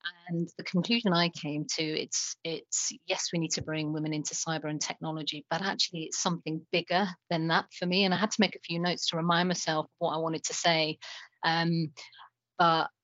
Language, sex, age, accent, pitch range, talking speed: English, female, 40-59, British, 160-180 Hz, 205 wpm